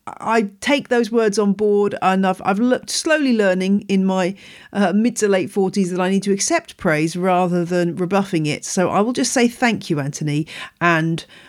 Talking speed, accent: 195 wpm, British